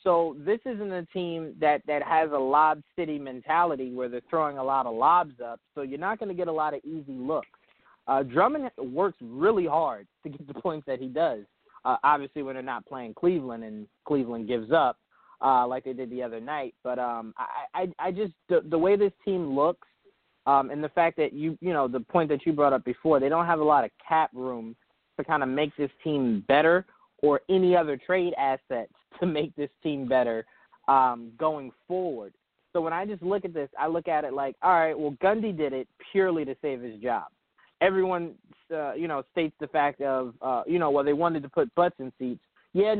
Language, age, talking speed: English, 20-39, 220 wpm